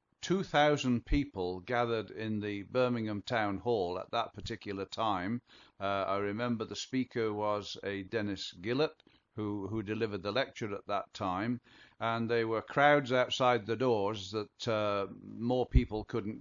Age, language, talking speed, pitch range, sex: 50-69, English, 150 wpm, 105-130 Hz, male